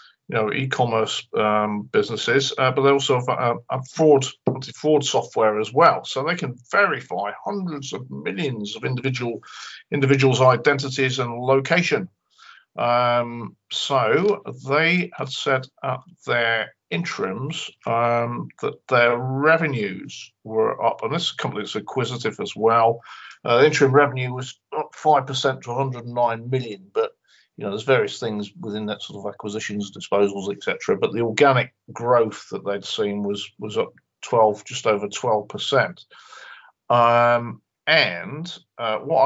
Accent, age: British, 50-69